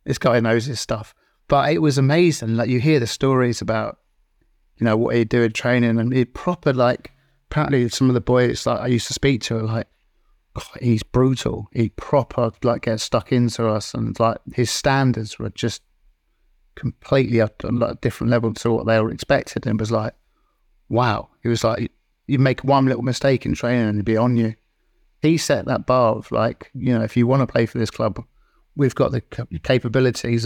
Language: English